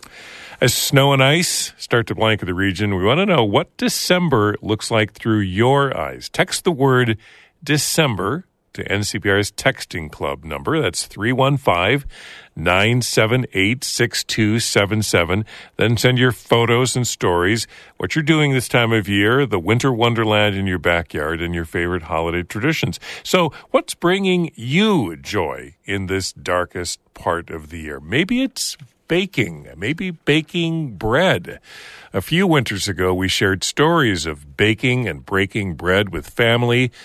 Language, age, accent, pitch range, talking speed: English, 50-69, American, 95-135 Hz, 140 wpm